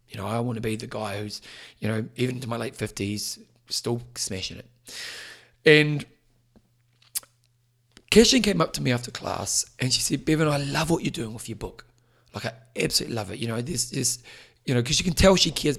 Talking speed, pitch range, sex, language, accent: 210 wpm, 120-150 Hz, male, English, British